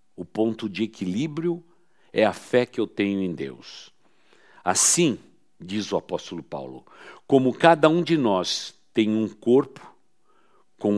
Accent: Brazilian